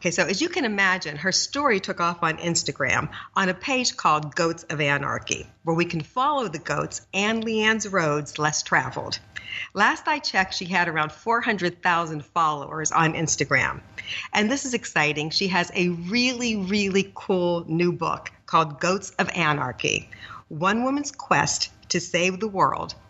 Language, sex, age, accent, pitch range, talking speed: English, female, 50-69, American, 160-210 Hz, 165 wpm